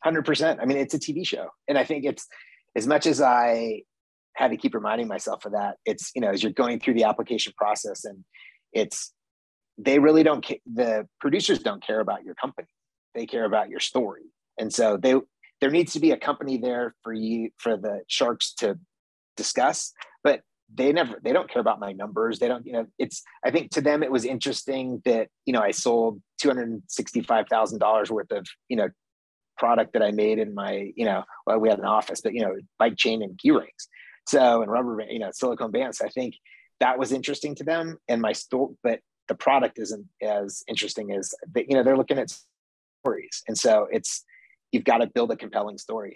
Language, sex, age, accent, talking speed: English, male, 30-49, American, 210 wpm